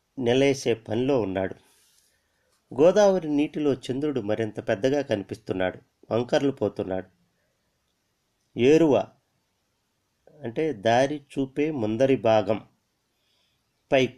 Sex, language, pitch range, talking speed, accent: male, Telugu, 110-150 Hz, 70 wpm, native